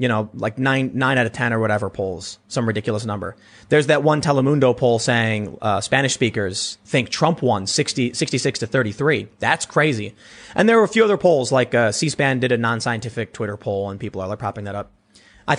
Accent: American